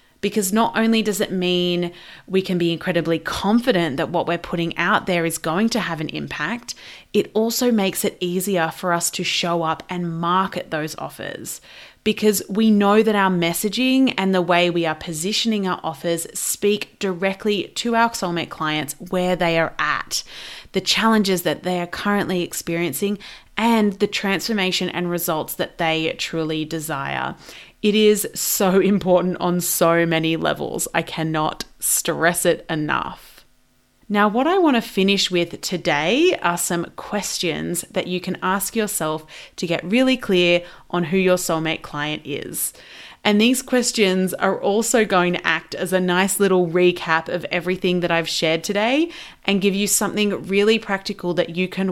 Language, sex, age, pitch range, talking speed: English, female, 30-49, 170-205 Hz, 165 wpm